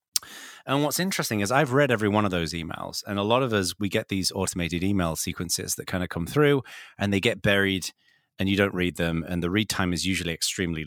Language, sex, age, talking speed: English, male, 30-49, 235 wpm